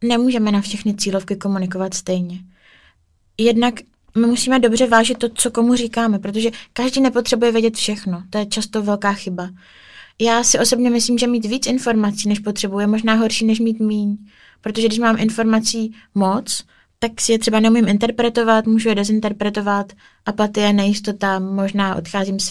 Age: 20-39